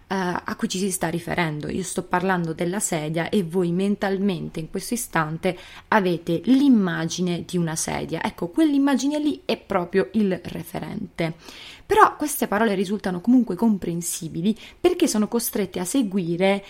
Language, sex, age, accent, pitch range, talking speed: Italian, female, 20-39, native, 170-210 Hz, 145 wpm